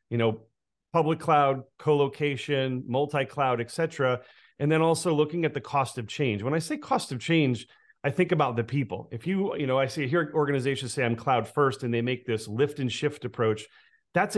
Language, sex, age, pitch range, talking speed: English, male, 40-59, 115-150 Hz, 215 wpm